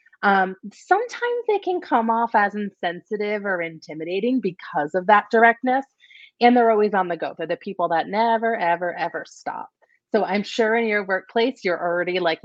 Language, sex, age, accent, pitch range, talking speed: English, female, 30-49, American, 180-230 Hz, 180 wpm